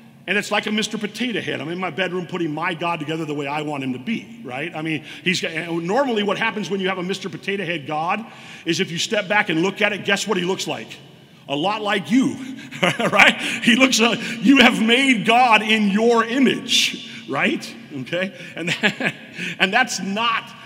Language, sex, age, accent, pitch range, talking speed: English, male, 40-59, American, 180-230 Hz, 220 wpm